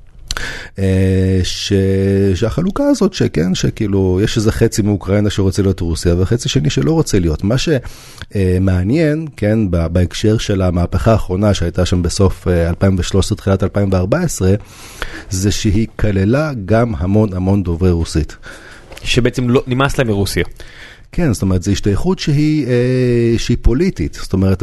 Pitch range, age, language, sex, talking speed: 95-115 Hz, 30-49, Hebrew, male, 120 wpm